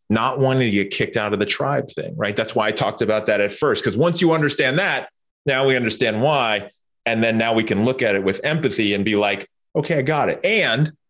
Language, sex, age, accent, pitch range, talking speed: English, male, 30-49, American, 100-130 Hz, 250 wpm